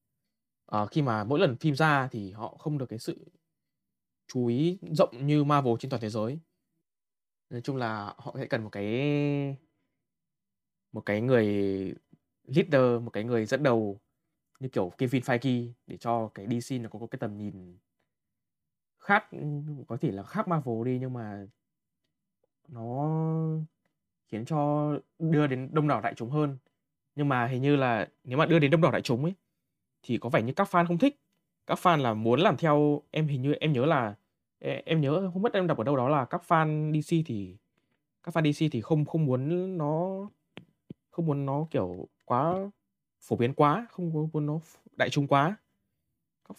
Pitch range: 120-160 Hz